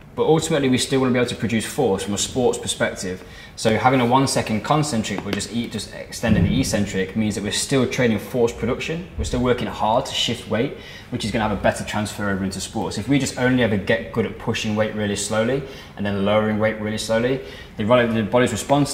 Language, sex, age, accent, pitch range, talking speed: English, male, 20-39, British, 100-115 Hz, 225 wpm